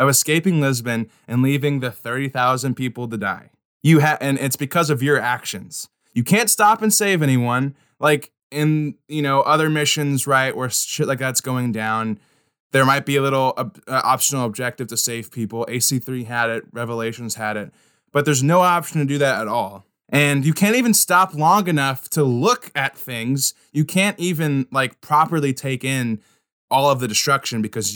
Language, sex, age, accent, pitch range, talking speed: English, male, 20-39, American, 120-155 Hz, 185 wpm